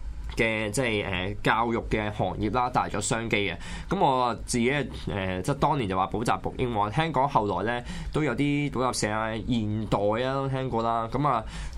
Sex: male